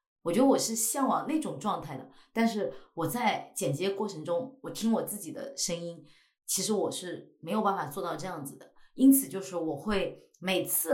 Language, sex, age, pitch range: Chinese, female, 30-49, 165-230 Hz